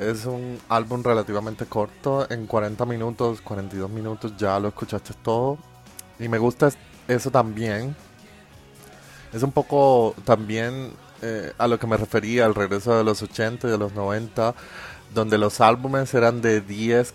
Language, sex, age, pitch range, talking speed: Spanish, male, 30-49, 105-125 Hz, 155 wpm